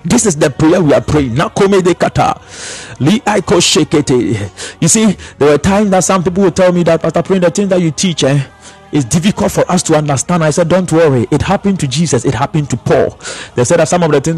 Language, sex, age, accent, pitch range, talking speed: English, male, 50-69, Nigerian, 155-205 Hz, 215 wpm